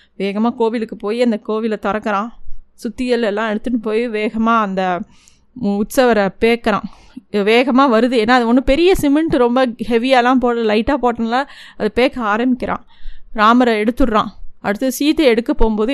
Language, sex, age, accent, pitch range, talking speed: Tamil, female, 30-49, native, 215-255 Hz, 130 wpm